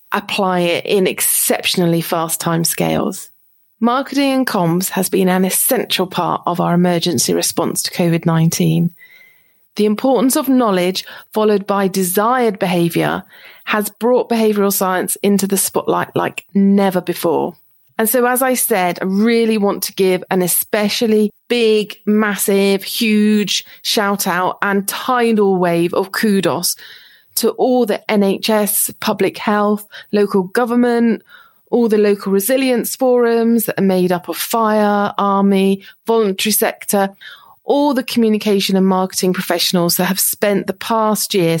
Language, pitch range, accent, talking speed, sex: English, 185-225 Hz, British, 135 wpm, female